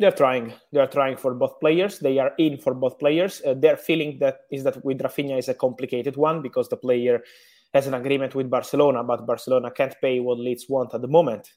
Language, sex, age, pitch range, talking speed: English, male, 20-39, 130-150 Hz, 225 wpm